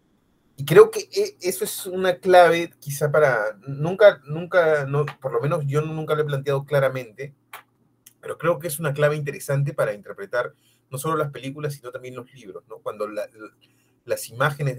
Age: 30-49